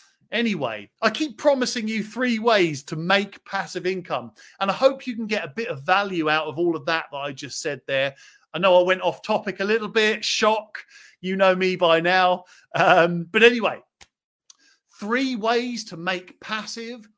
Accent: British